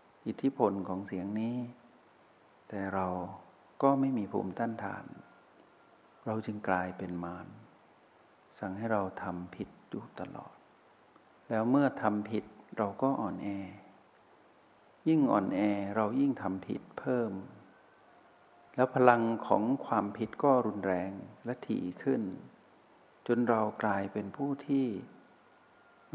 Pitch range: 95-120 Hz